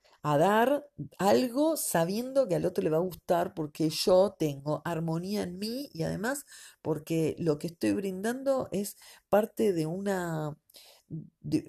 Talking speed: 150 wpm